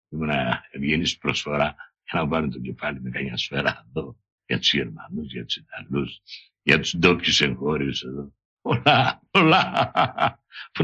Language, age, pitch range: Greek, 60-79, 90-120 Hz